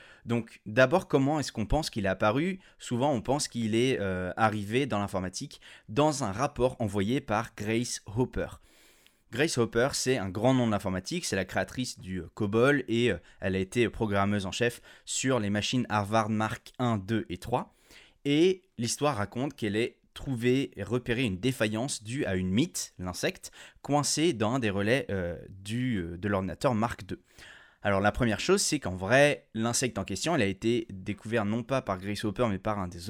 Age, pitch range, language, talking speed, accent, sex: 20-39, 100-130 Hz, French, 185 wpm, French, male